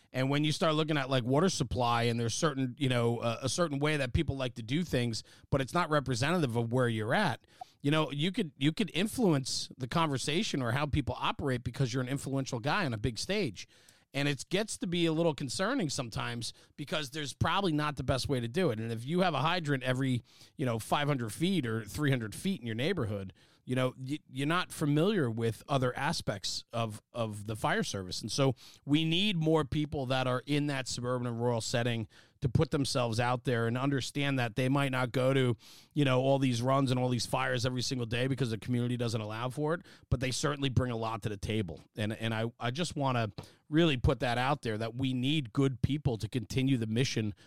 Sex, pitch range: male, 120-150 Hz